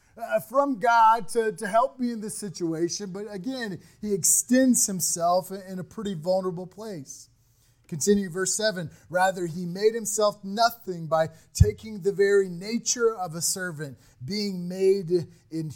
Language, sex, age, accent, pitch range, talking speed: English, male, 30-49, American, 145-205 Hz, 150 wpm